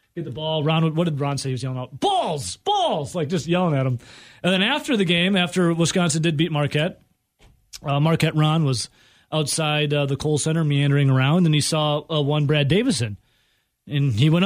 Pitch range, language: 145-180 Hz, English